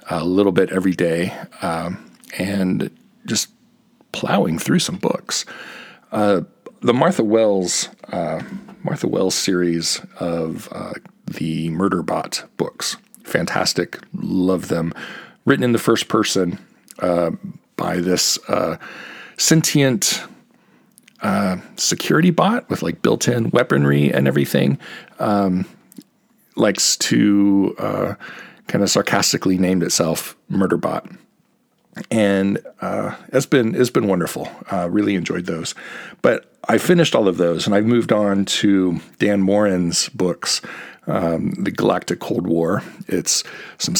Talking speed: 125 wpm